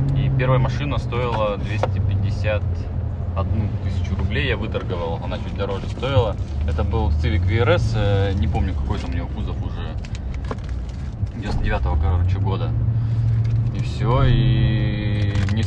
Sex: male